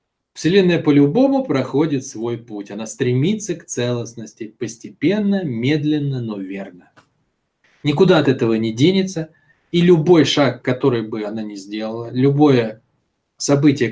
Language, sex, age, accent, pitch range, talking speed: Russian, male, 20-39, native, 125-175 Hz, 120 wpm